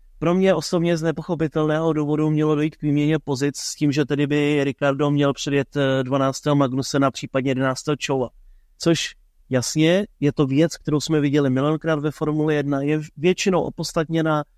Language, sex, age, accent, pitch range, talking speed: Czech, male, 30-49, native, 140-155 Hz, 160 wpm